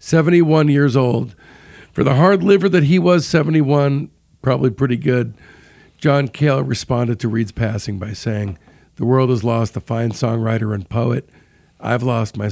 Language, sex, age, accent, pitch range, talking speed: English, male, 50-69, American, 115-145 Hz, 165 wpm